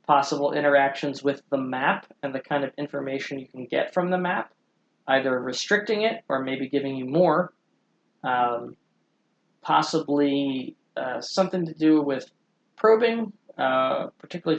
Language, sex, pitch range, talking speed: English, male, 130-170 Hz, 140 wpm